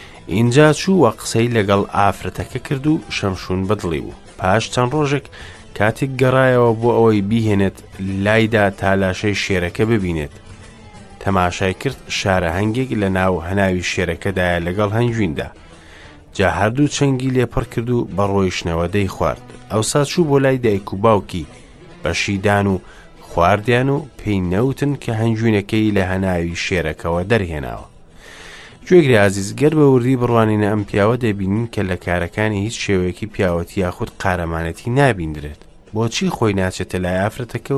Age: 30-49